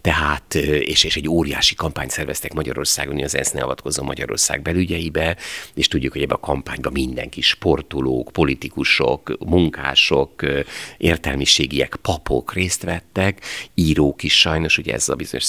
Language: Hungarian